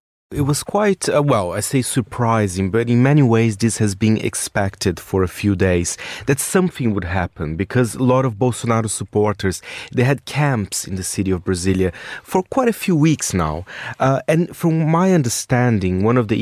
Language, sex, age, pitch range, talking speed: English, male, 30-49, 100-140 Hz, 190 wpm